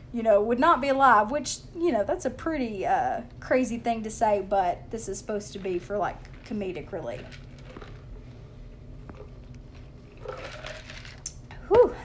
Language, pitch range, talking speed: English, 200-275 Hz, 140 wpm